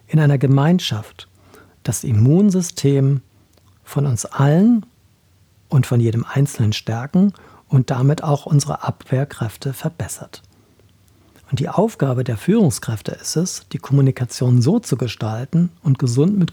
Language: German